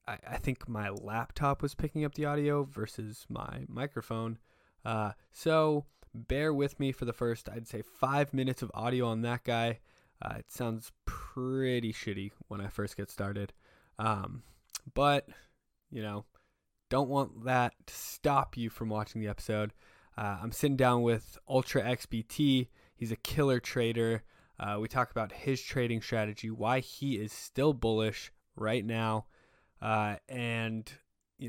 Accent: American